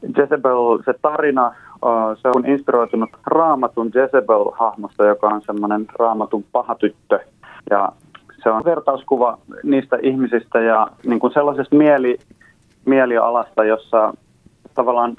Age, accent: 30-49, native